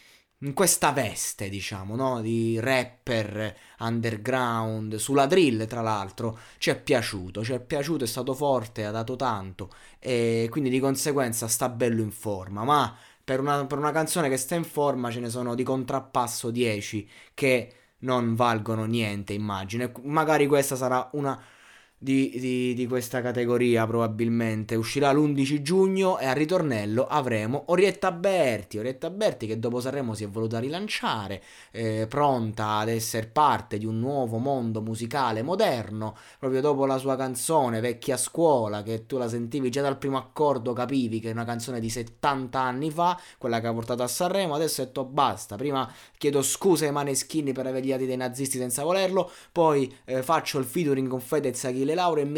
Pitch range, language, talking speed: 115-140 Hz, Italian, 170 wpm